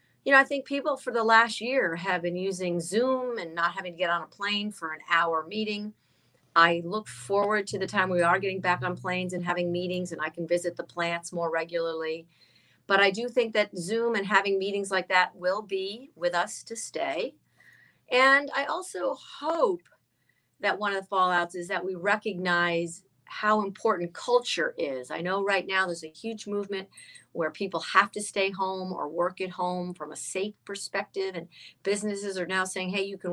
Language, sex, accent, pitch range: English, female, American, 175-215 Hz